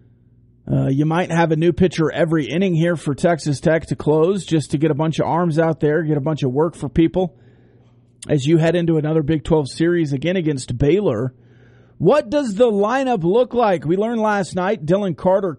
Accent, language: American, English